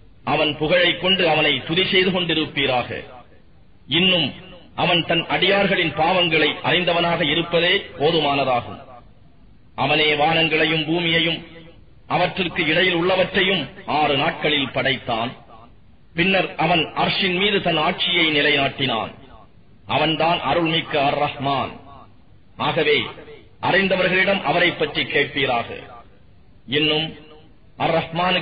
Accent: Indian